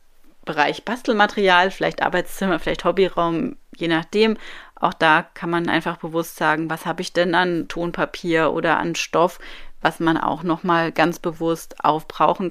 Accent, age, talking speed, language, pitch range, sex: German, 30-49, 150 wpm, German, 165-190 Hz, female